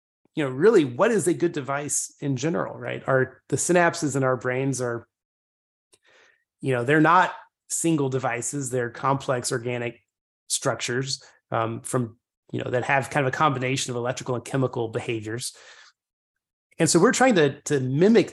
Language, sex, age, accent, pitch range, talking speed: English, male, 30-49, American, 125-150 Hz, 165 wpm